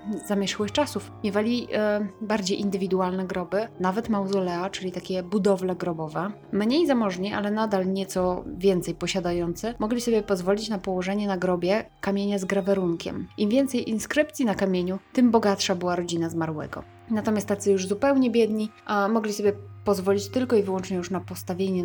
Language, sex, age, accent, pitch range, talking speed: Polish, female, 20-39, native, 185-220 Hz, 150 wpm